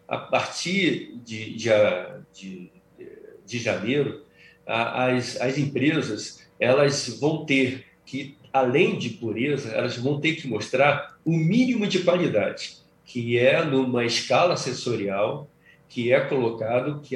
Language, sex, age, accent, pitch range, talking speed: Portuguese, male, 50-69, Brazilian, 125-170 Hz, 120 wpm